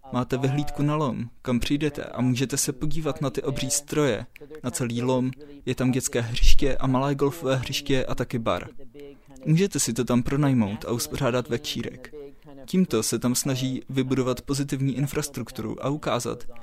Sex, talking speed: male, 160 wpm